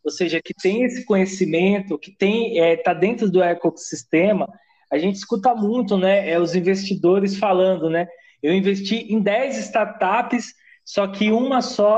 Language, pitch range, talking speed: Portuguese, 180-225 Hz, 145 wpm